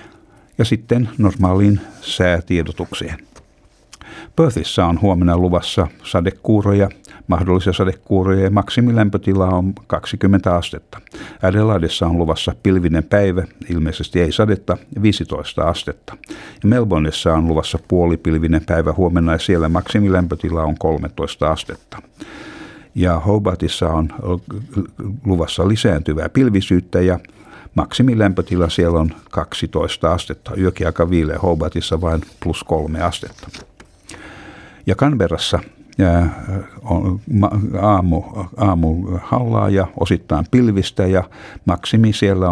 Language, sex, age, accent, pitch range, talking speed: Finnish, male, 60-79, native, 85-100 Hz, 95 wpm